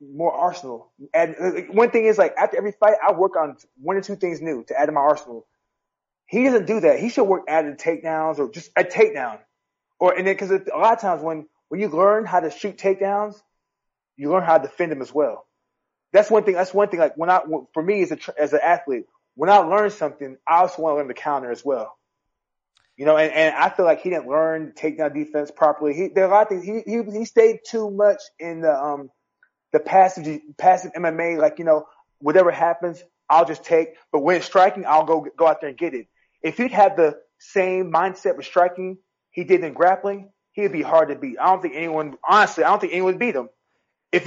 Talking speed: 235 wpm